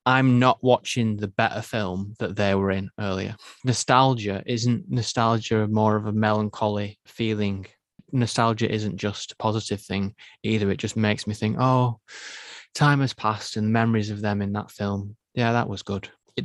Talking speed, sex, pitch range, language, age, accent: 170 wpm, male, 100-120 Hz, English, 20-39, British